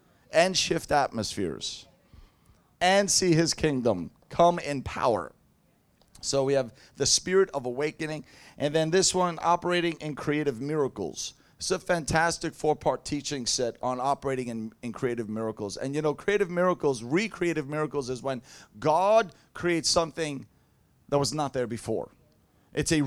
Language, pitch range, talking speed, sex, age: English, 120-155 Hz, 145 wpm, male, 30-49